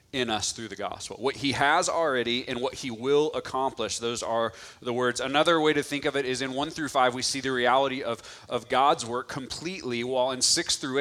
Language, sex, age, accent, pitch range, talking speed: English, male, 30-49, American, 120-145 Hz, 230 wpm